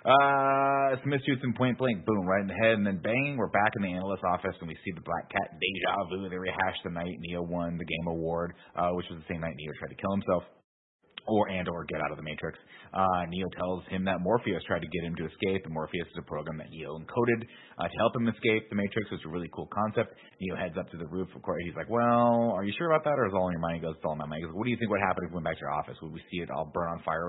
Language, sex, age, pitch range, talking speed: English, male, 30-49, 85-100 Hz, 310 wpm